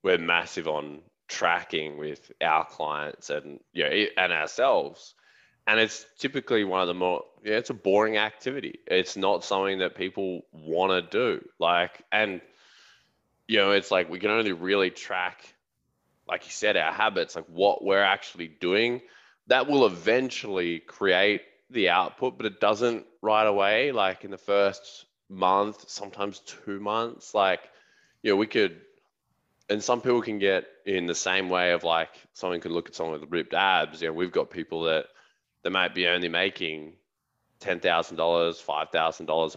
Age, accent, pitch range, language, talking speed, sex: 20-39, Australian, 85-110 Hz, English, 165 wpm, male